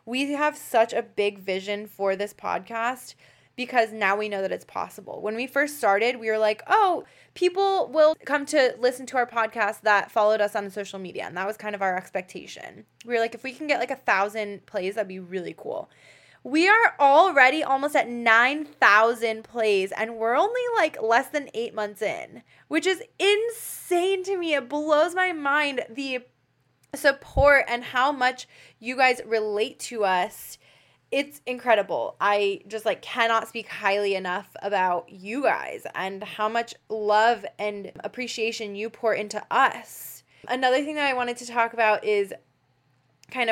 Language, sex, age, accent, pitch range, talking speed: English, female, 20-39, American, 205-270 Hz, 175 wpm